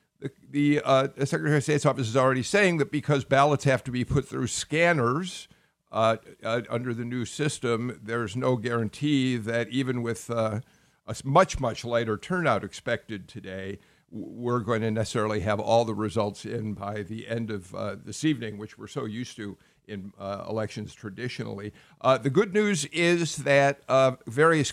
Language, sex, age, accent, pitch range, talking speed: English, male, 50-69, American, 115-150 Hz, 175 wpm